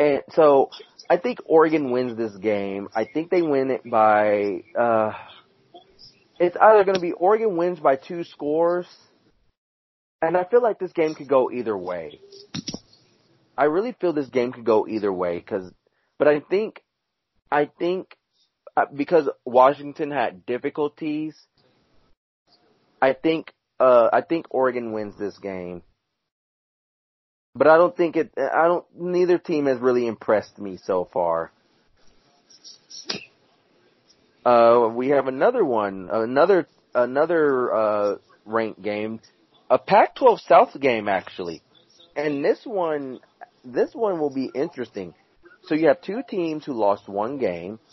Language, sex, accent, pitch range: English, male, American, 105-165 Hz